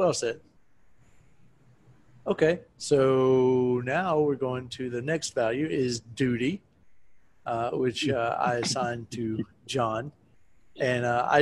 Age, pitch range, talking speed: 40-59, 125-145 Hz, 120 wpm